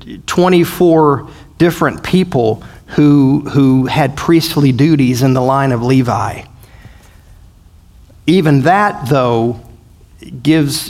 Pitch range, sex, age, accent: 125-155 Hz, male, 40-59, American